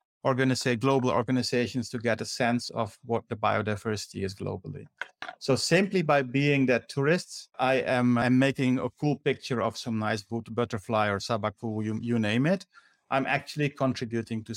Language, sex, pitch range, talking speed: English, male, 115-140 Hz, 165 wpm